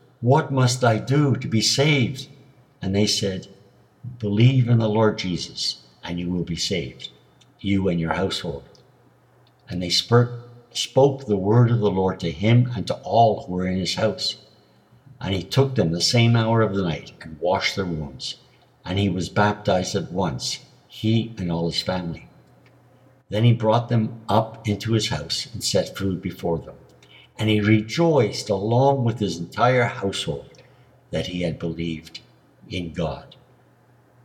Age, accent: 60-79, American